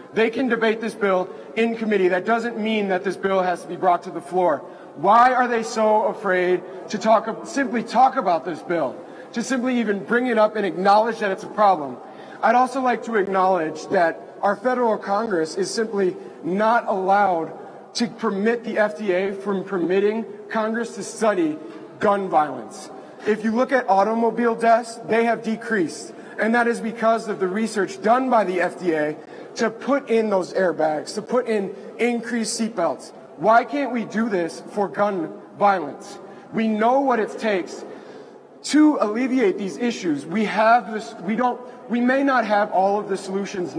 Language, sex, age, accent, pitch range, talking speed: English, male, 30-49, American, 195-230 Hz, 175 wpm